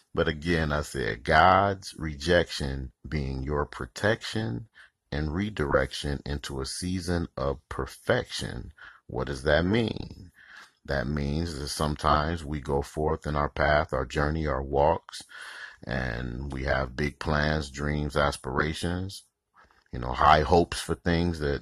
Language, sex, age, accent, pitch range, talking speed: English, male, 40-59, American, 70-80 Hz, 130 wpm